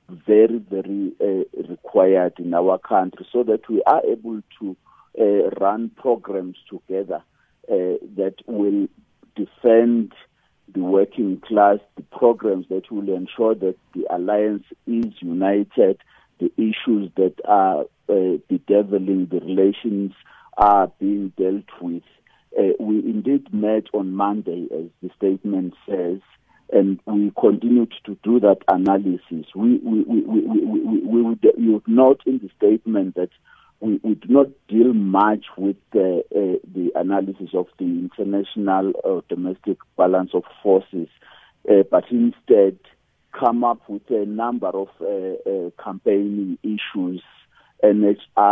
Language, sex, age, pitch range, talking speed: English, male, 50-69, 95-115 Hz, 135 wpm